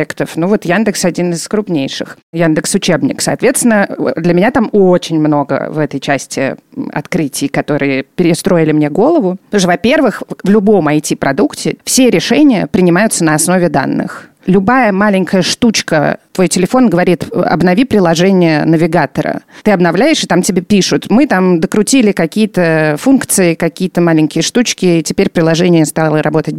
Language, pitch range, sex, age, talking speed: Russian, 170-220 Hz, female, 30-49, 140 wpm